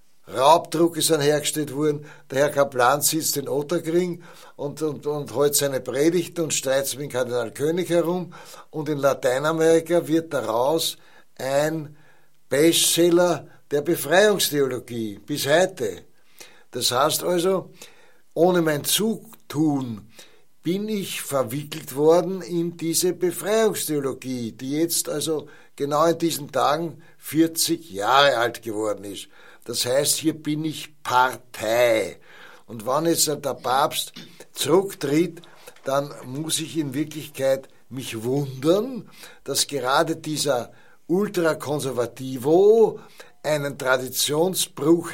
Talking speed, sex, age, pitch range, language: 115 wpm, male, 60-79, 140-170 Hz, German